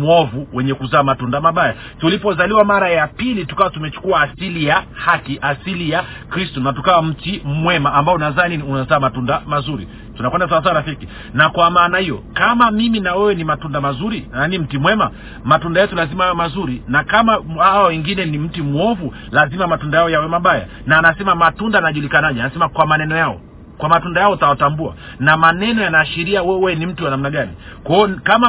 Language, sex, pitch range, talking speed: Swahili, male, 145-185 Hz, 185 wpm